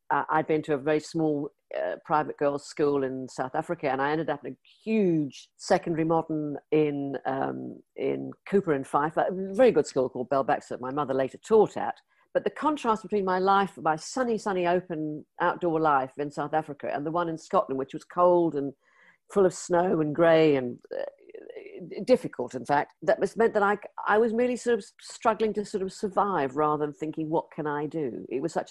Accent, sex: British, female